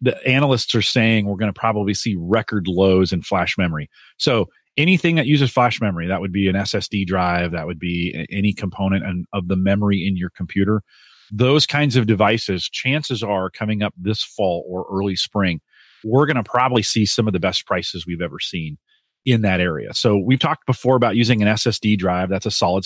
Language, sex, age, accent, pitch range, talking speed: English, male, 30-49, American, 95-125 Hz, 205 wpm